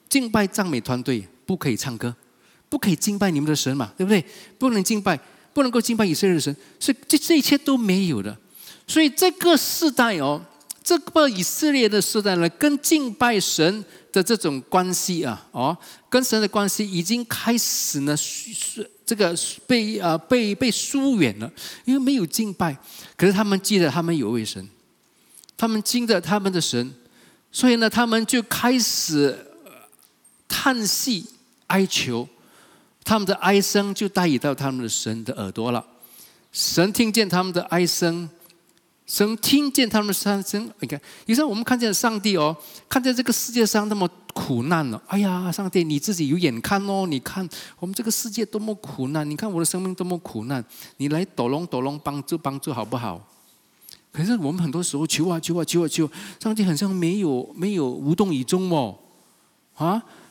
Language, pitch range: English, 155-225 Hz